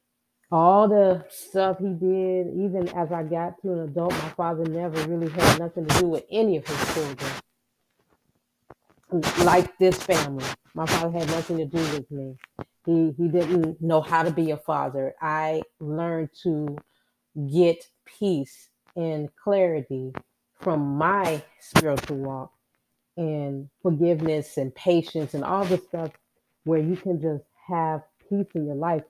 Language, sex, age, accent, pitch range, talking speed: English, female, 30-49, American, 145-180 Hz, 150 wpm